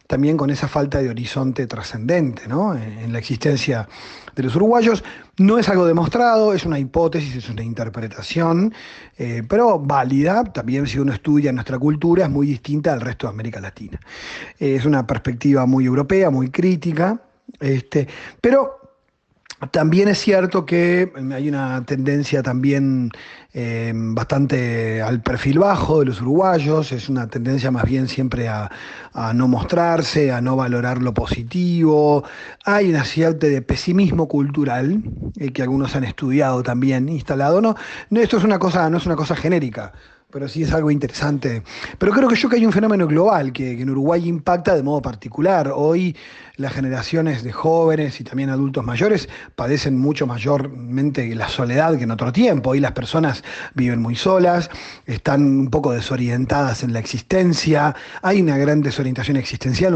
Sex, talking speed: male, 160 wpm